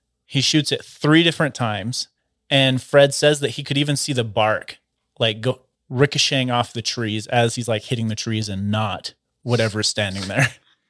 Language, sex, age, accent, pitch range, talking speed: English, male, 30-49, American, 110-135 Hz, 180 wpm